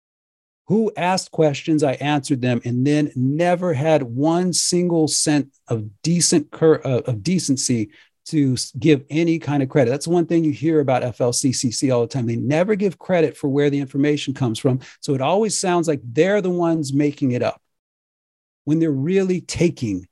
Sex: male